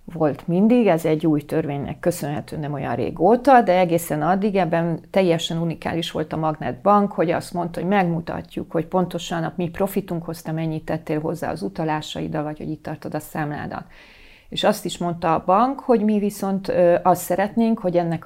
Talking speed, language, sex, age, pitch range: 180 wpm, Hungarian, female, 40-59, 160-190 Hz